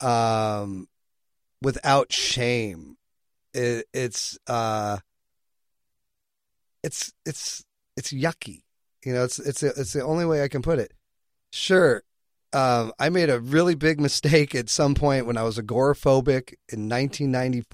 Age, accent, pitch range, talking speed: 30-49, American, 115-145 Hz, 130 wpm